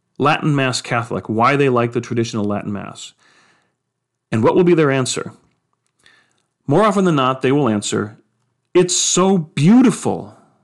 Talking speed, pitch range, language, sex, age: 145 wpm, 120-185 Hz, English, male, 40-59